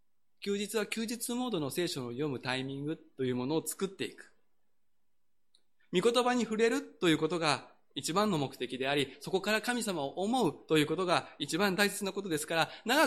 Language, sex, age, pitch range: Japanese, male, 20-39, 125-215 Hz